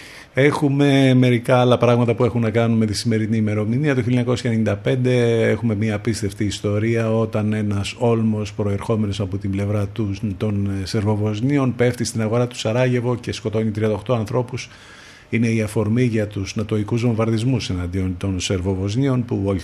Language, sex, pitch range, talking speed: Greek, male, 105-120 Hz, 145 wpm